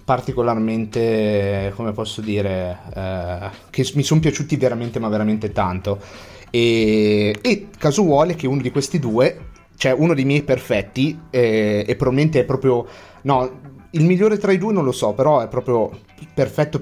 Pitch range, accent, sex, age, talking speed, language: 110-135 Hz, native, male, 30-49, 155 wpm, Italian